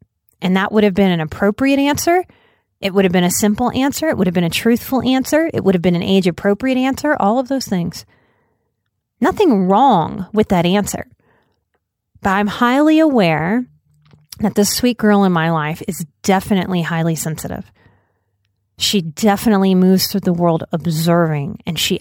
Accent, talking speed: American, 170 wpm